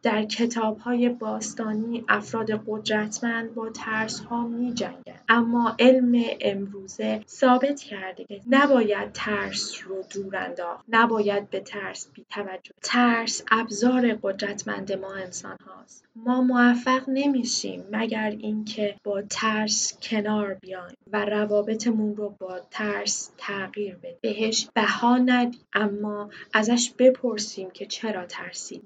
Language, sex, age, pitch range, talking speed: Persian, female, 10-29, 210-245 Hz, 115 wpm